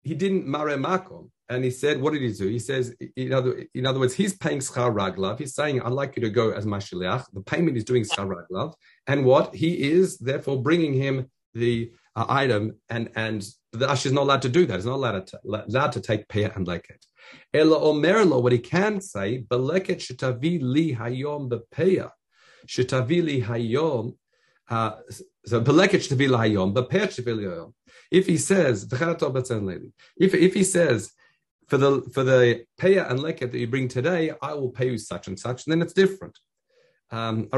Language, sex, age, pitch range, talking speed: English, male, 50-69, 115-160 Hz, 175 wpm